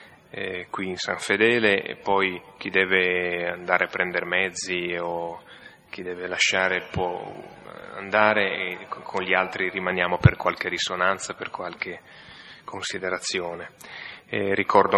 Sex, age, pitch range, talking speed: male, 30-49, 90-105 Hz, 125 wpm